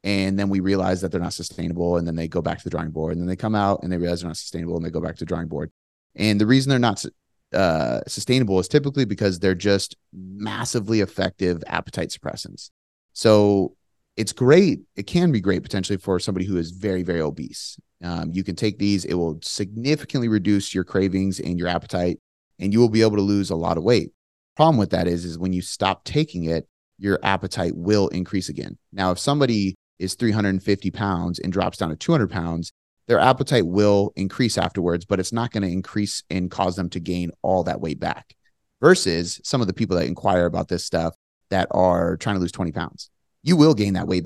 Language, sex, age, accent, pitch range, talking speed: English, male, 30-49, American, 85-105 Hz, 220 wpm